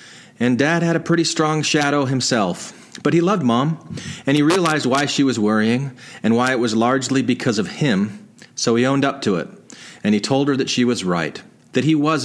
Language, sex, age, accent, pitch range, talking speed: English, male, 40-59, American, 110-150 Hz, 215 wpm